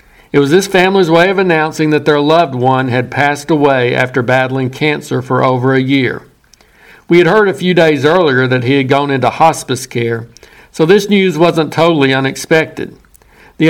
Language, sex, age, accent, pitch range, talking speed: English, male, 60-79, American, 135-165 Hz, 185 wpm